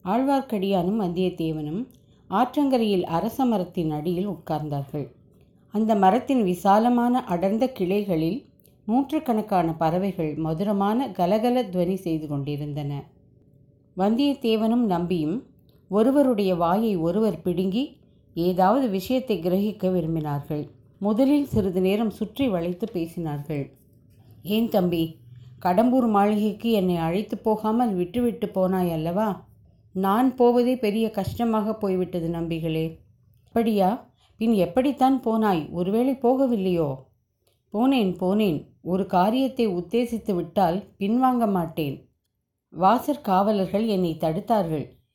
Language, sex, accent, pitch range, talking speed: Tamil, female, native, 165-225 Hz, 90 wpm